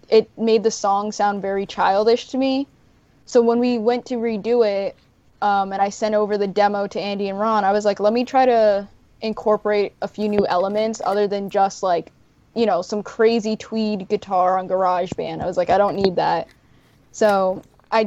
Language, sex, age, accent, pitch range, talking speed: English, female, 10-29, American, 190-220 Hz, 205 wpm